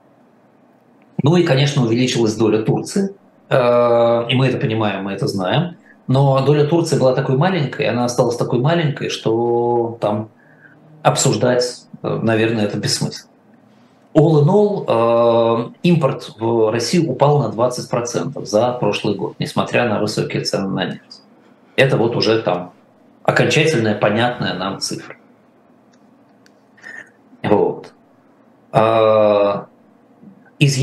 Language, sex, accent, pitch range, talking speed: Russian, male, native, 110-150 Hz, 120 wpm